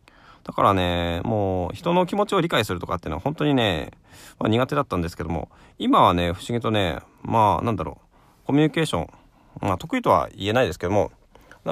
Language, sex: Japanese, male